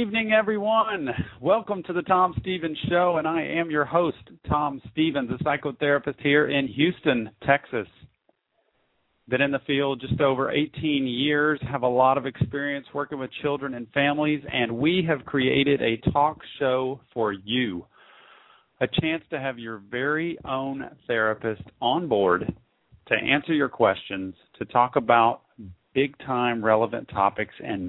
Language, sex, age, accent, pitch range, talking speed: English, male, 40-59, American, 115-145 Hz, 155 wpm